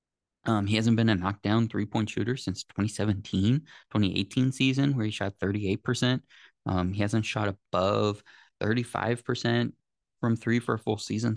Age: 20-39